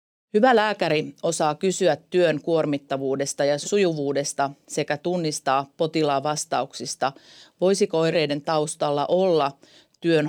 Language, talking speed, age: Finnish, 100 wpm, 40-59